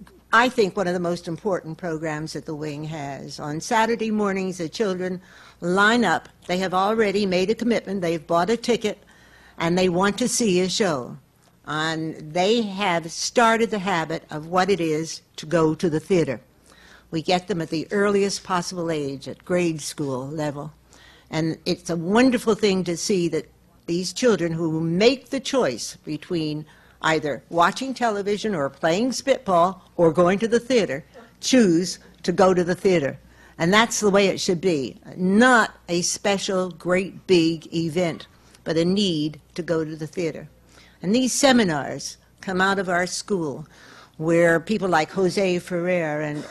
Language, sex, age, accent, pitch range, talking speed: English, female, 60-79, American, 160-200 Hz, 170 wpm